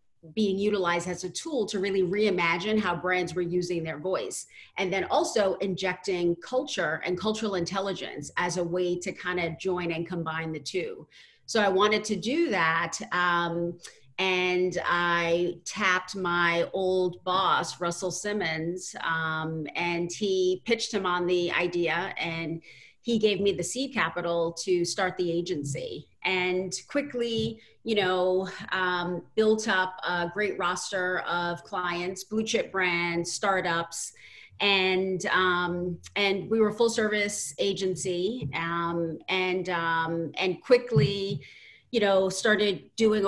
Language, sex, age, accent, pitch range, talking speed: English, female, 40-59, American, 175-205 Hz, 140 wpm